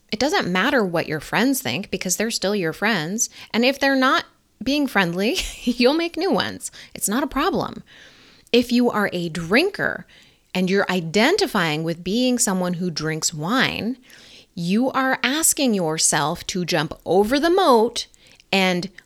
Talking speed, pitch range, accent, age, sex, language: 155 wpm, 170-245 Hz, American, 20-39, female, English